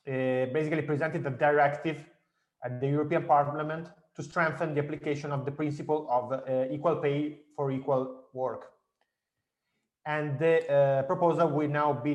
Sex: male